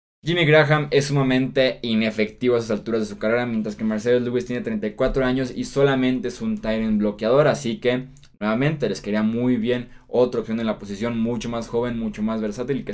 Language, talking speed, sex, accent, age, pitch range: Spanish, 205 wpm, male, Mexican, 20-39, 110-130 Hz